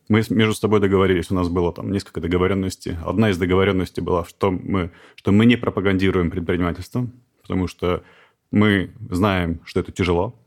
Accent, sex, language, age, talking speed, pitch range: native, male, Russian, 30-49, 155 wpm, 90-105 Hz